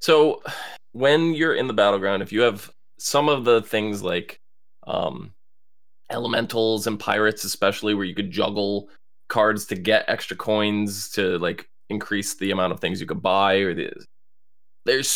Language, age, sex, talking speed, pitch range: English, 20-39, male, 160 wpm, 95-110 Hz